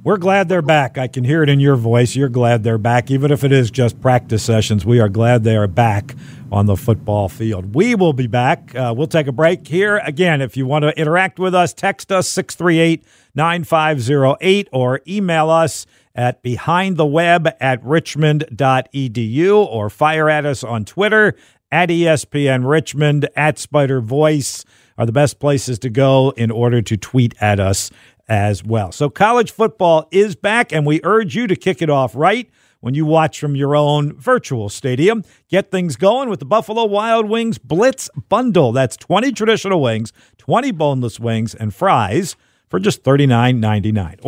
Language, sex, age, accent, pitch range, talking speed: English, male, 50-69, American, 120-170 Hz, 175 wpm